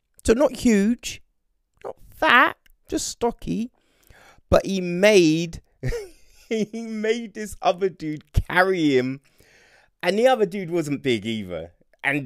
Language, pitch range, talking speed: English, 100-155 Hz, 120 wpm